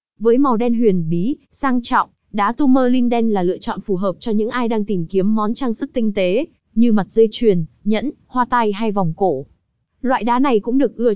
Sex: female